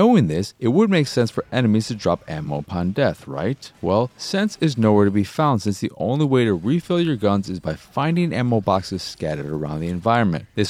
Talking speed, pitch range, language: 220 wpm, 90-130 Hz, English